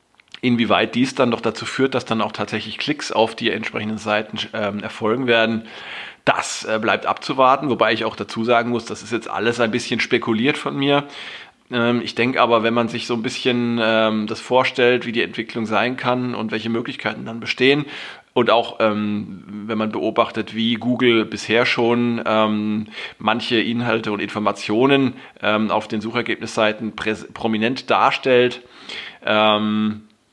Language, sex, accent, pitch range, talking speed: German, male, German, 110-125 Hz, 165 wpm